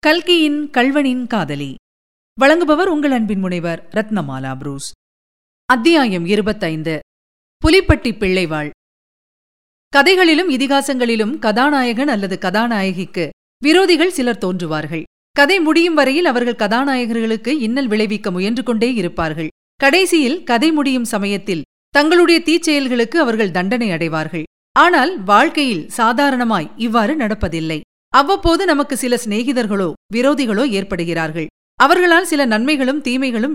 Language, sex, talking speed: Tamil, female, 100 wpm